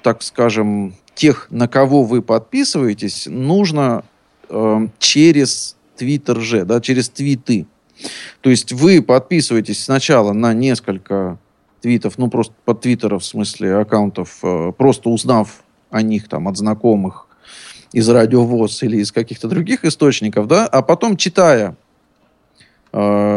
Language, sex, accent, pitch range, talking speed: Russian, male, native, 110-155 Hz, 130 wpm